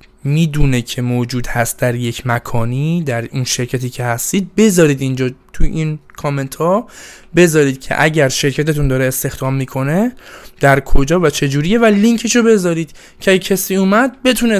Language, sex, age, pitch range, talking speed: Persian, male, 20-39, 130-180 Hz, 150 wpm